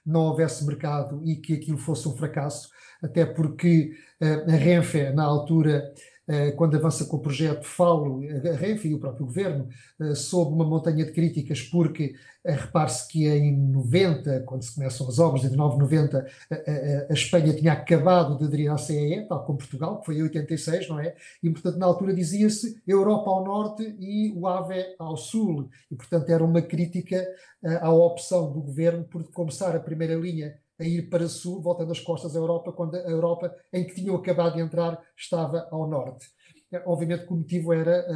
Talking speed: 185 wpm